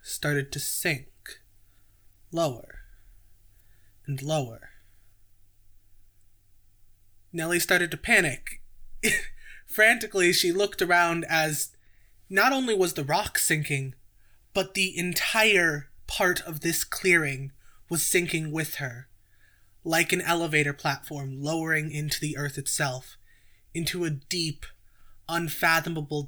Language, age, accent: English, 20-39, American